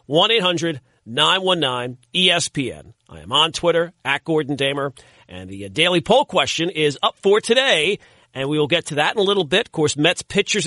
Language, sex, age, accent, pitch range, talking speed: English, male, 40-59, American, 150-195 Hz, 175 wpm